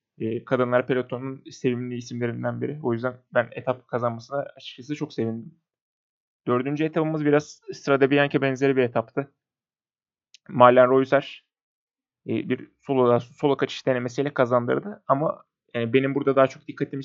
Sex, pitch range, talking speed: male, 125-140 Hz, 120 wpm